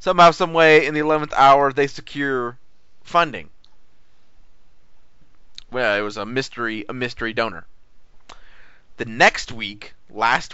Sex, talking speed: male, 125 wpm